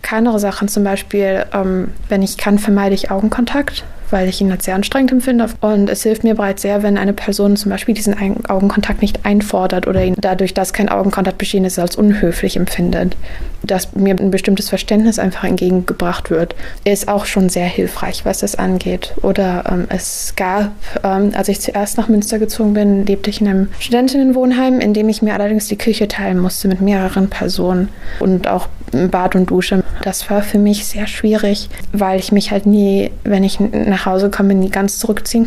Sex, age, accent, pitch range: female, 20-39, German, 190-210 Hz